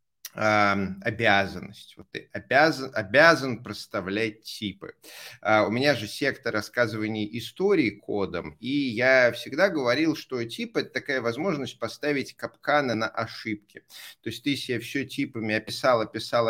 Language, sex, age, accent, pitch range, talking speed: Russian, male, 30-49, native, 105-130 Hz, 125 wpm